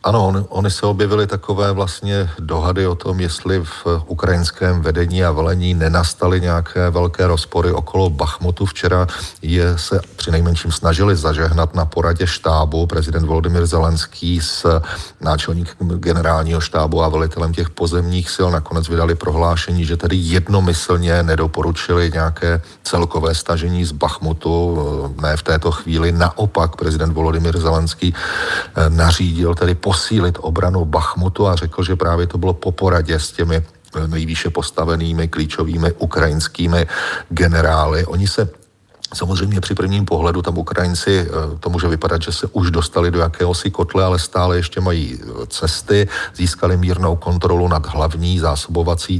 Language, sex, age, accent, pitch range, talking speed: Czech, male, 40-59, native, 80-90 Hz, 140 wpm